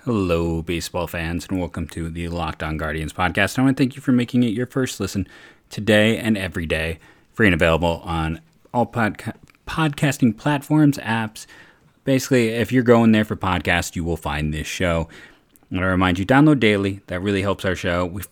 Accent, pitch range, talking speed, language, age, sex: American, 90-115 Hz, 195 wpm, English, 30-49, male